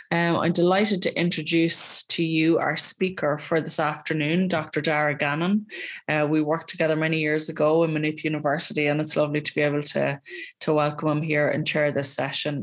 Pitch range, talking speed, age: 145-170 Hz, 190 wpm, 20-39